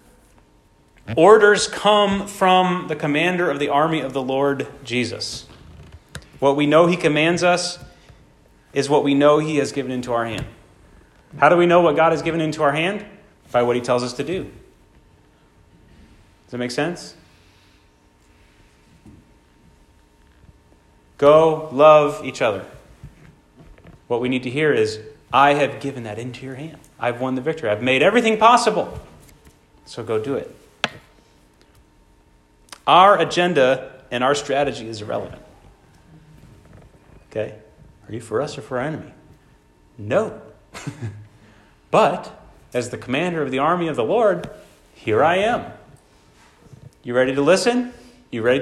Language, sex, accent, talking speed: English, male, American, 140 wpm